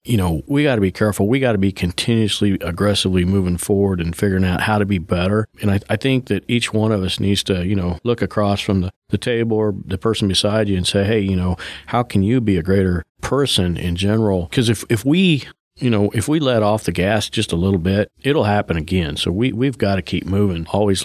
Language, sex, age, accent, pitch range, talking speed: English, male, 40-59, American, 95-110 Hz, 250 wpm